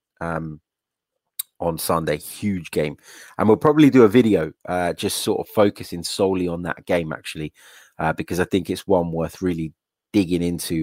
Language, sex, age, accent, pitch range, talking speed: English, male, 30-49, British, 85-105 Hz, 170 wpm